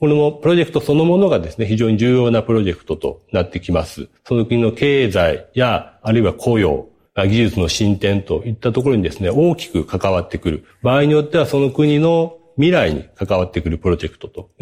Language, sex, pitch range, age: Japanese, male, 95-150 Hz, 40-59